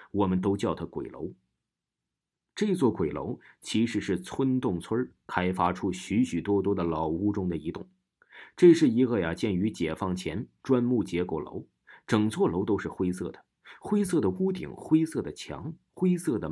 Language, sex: Chinese, male